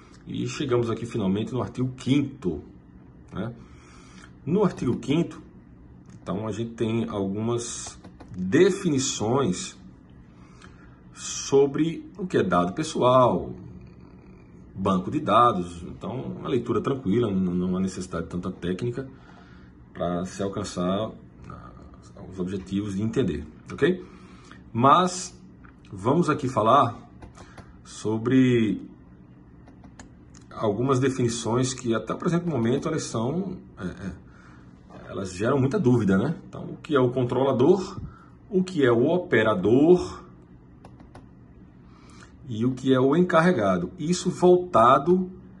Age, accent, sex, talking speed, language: 40-59, Brazilian, male, 110 wpm, Portuguese